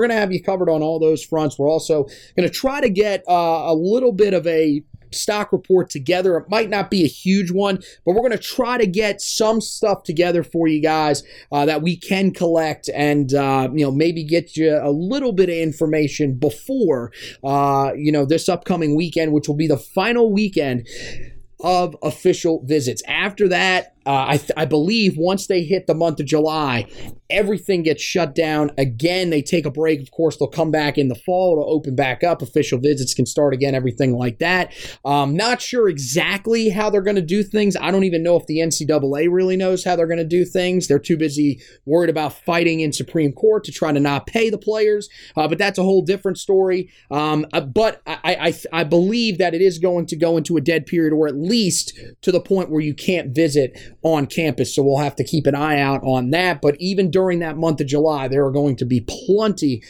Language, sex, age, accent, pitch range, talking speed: English, male, 30-49, American, 145-185 Hz, 220 wpm